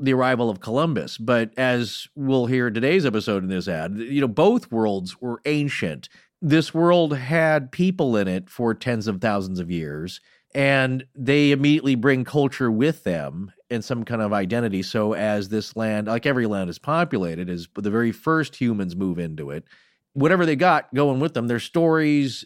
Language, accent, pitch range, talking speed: English, American, 110-140 Hz, 185 wpm